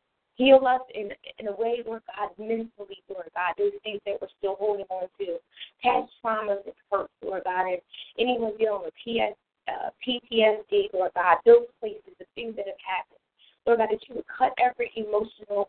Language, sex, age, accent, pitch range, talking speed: English, female, 20-39, American, 200-250 Hz, 185 wpm